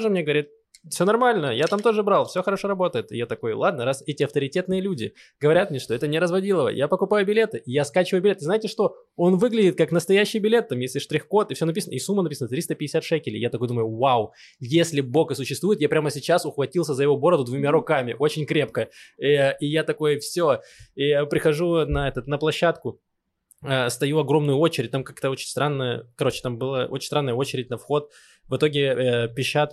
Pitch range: 125-155 Hz